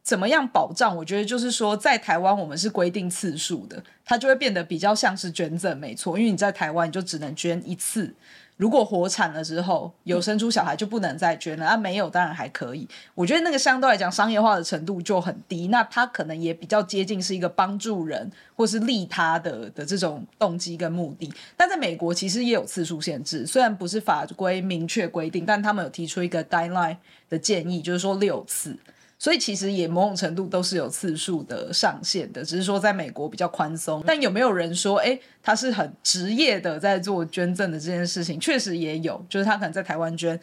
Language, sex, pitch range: Chinese, female, 170-210 Hz